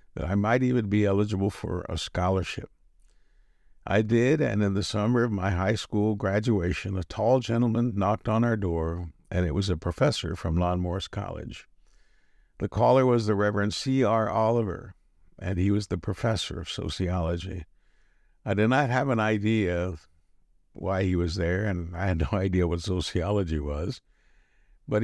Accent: American